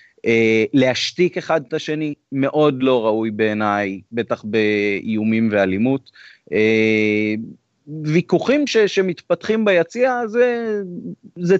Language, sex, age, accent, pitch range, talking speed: Hebrew, male, 30-49, native, 110-145 Hz, 100 wpm